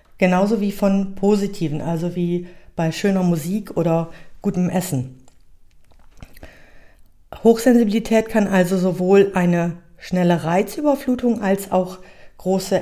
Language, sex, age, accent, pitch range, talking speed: German, female, 50-69, German, 170-210 Hz, 105 wpm